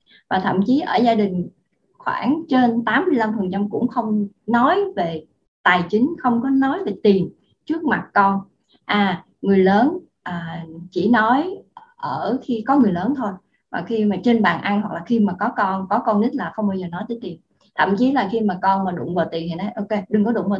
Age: 20-39